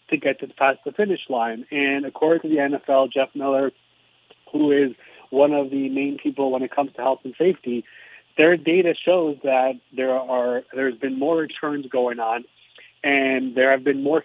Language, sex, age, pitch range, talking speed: English, male, 30-49, 130-145 Hz, 190 wpm